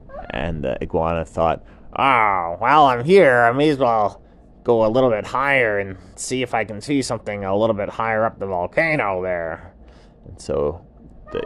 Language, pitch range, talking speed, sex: English, 90-125 Hz, 185 wpm, male